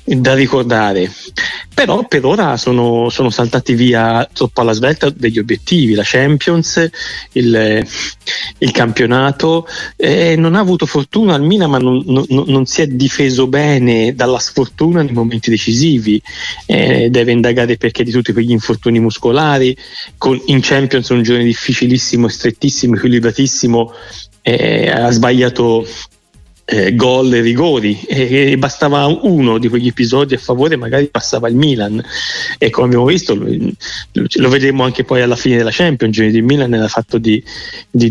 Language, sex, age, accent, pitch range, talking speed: Italian, male, 30-49, native, 120-150 Hz, 150 wpm